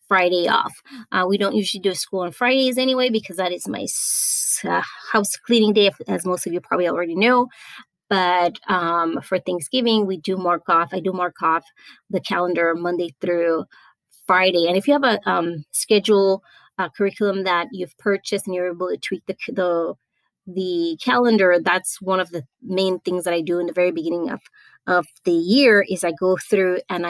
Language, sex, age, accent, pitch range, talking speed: English, female, 20-39, American, 180-215 Hz, 190 wpm